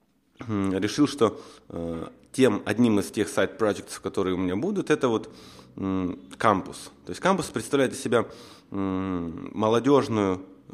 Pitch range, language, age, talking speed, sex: 95-120 Hz, Ukrainian, 20-39, 135 wpm, male